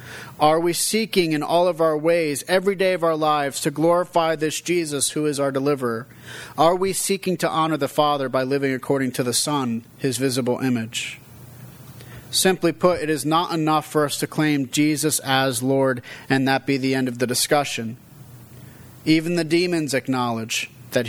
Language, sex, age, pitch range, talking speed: English, male, 40-59, 130-160 Hz, 180 wpm